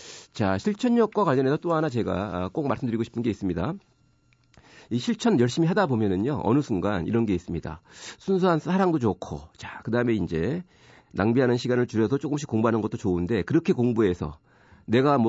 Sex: male